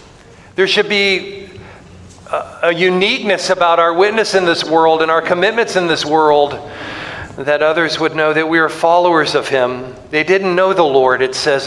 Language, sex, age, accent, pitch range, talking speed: English, male, 50-69, American, 130-155 Hz, 175 wpm